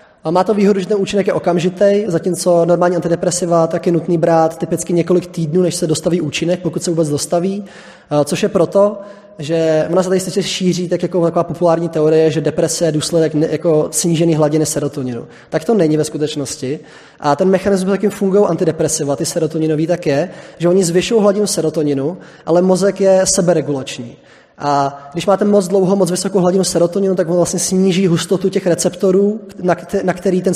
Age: 20-39